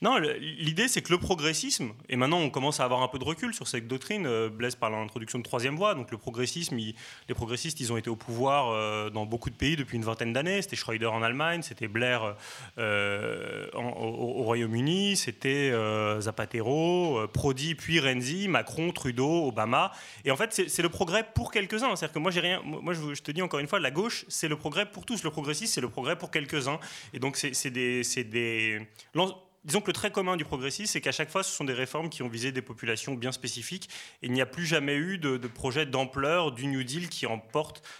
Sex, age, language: male, 30-49, French